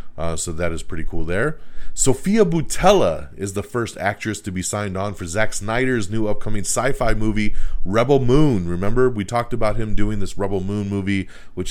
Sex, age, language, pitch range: male, 30-49, English, 85-110 Hz